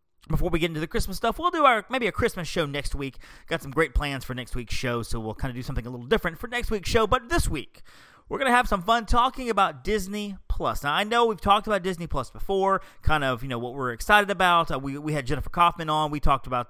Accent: American